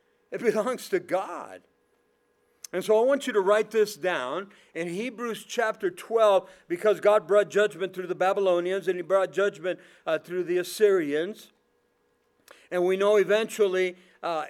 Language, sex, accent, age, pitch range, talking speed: English, male, American, 50-69, 185-220 Hz, 155 wpm